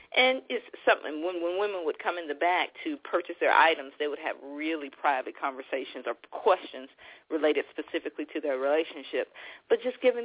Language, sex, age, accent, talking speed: English, female, 40-59, American, 180 wpm